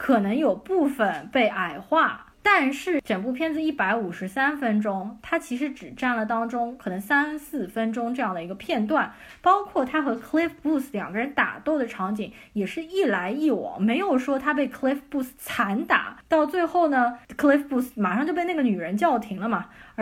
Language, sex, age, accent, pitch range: Chinese, female, 20-39, native, 220-310 Hz